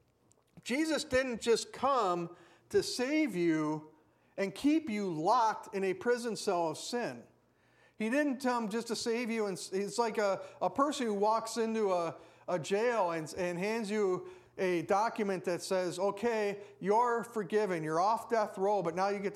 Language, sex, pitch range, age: English, male, 185-240 Hz, 50-69